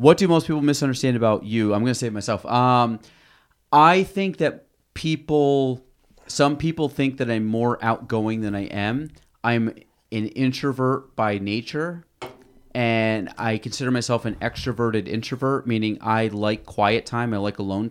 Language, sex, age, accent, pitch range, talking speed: English, male, 30-49, American, 110-130 Hz, 165 wpm